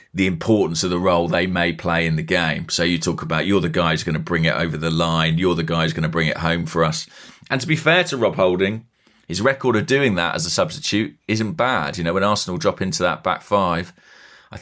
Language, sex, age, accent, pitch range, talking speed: English, male, 30-49, British, 85-110 Hz, 265 wpm